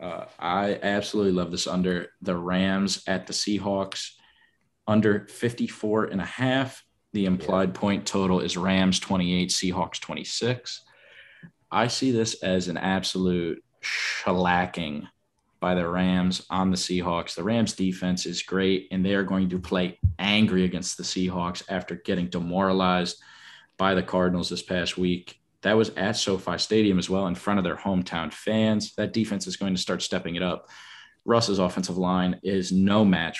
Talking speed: 160 wpm